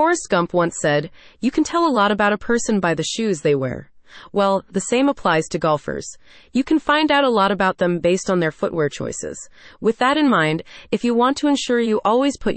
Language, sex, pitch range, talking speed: English, female, 170-230 Hz, 230 wpm